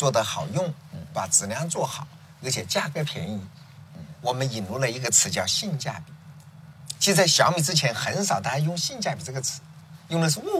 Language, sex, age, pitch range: Chinese, male, 50-69, 145-165 Hz